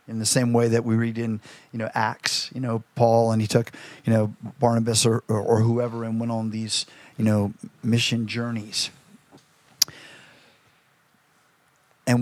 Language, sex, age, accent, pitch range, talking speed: English, male, 40-59, American, 115-130 Hz, 160 wpm